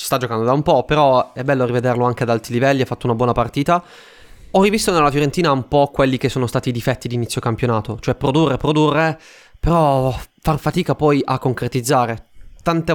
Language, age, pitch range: Italian, 20-39, 120-145 Hz